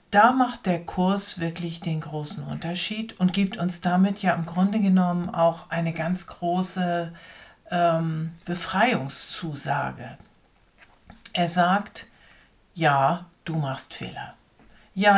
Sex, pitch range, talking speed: female, 160-190 Hz, 115 wpm